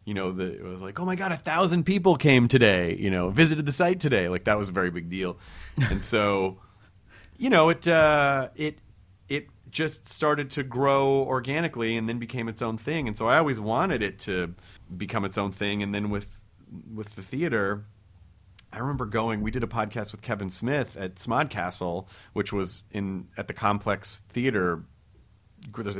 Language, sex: English, male